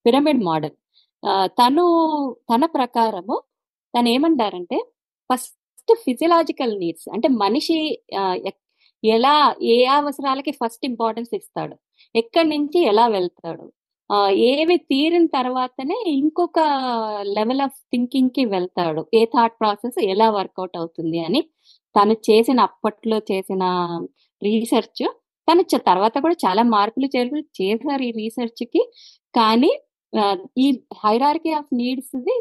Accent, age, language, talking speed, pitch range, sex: native, 20-39, Telugu, 100 wpm, 210-315 Hz, female